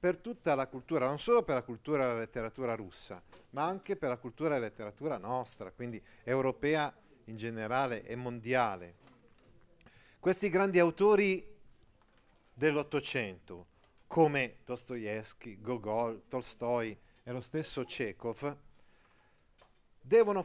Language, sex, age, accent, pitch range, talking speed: Italian, male, 40-59, native, 120-160 Hz, 120 wpm